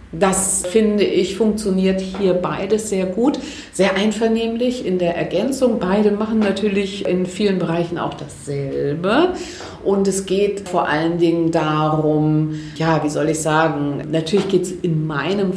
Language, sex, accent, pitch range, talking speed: German, female, German, 160-195 Hz, 145 wpm